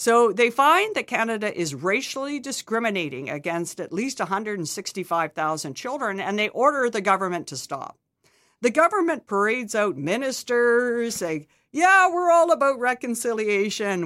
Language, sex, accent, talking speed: English, female, American, 130 wpm